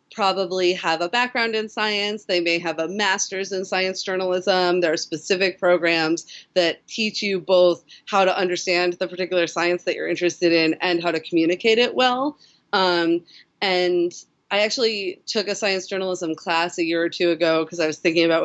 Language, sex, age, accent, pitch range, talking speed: English, female, 30-49, American, 170-195 Hz, 185 wpm